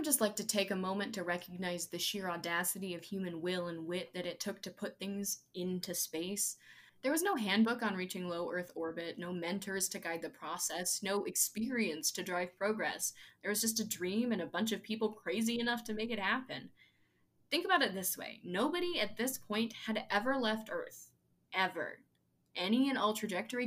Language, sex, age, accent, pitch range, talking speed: English, female, 10-29, American, 180-230 Hz, 200 wpm